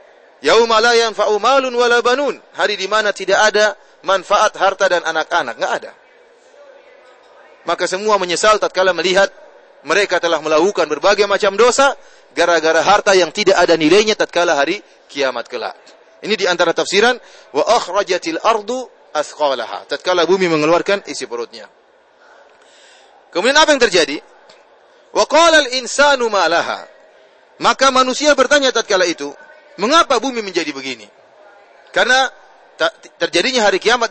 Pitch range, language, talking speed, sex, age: 190-310 Hz, English, 115 wpm, male, 30-49